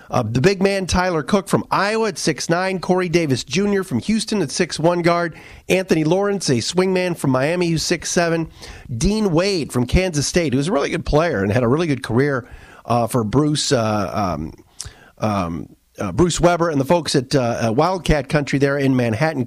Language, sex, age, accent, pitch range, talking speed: English, male, 40-59, American, 130-175 Hz, 190 wpm